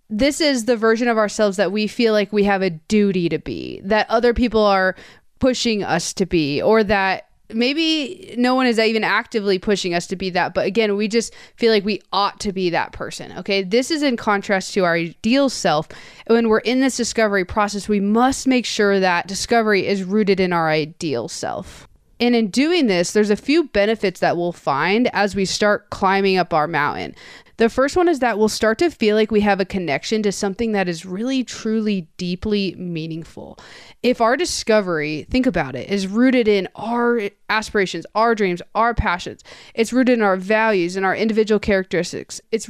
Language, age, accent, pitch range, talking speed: English, 20-39, American, 190-230 Hz, 200 wpm